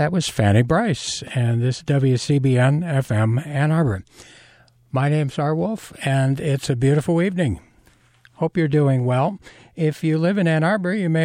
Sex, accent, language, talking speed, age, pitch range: male, American, English, 165 wpm, 60-79, 120-155 Hz